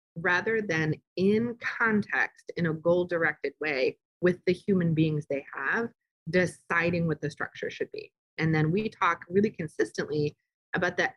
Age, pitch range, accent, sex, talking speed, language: 30-49, 155-210 Hz, American, female, 150 wpm, English